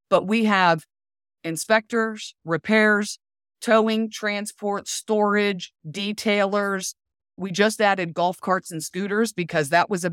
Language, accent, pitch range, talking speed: English, American, 165-215 Hz, 120 wpm